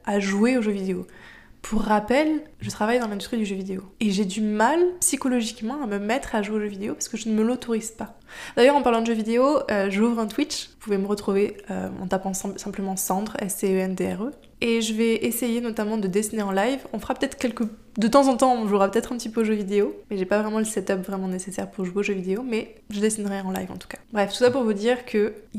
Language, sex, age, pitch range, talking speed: French, female, 20-39, 200-235 Hz, 255 wpm